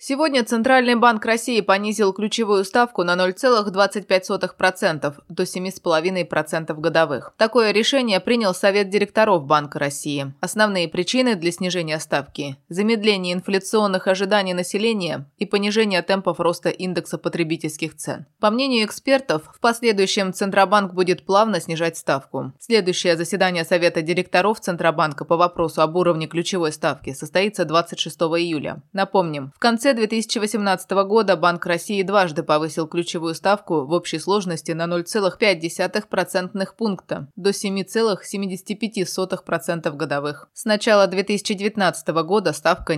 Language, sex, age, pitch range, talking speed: Russian, female, 20-39, 170-215 Hz, 120 wpm